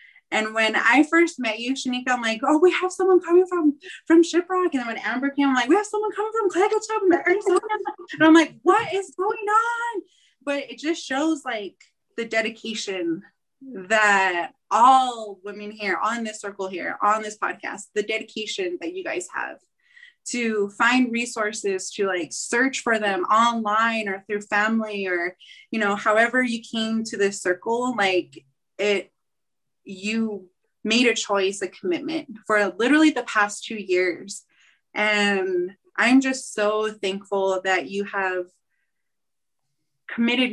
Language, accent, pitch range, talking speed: English, American, 200-285 Hz, 155 wpm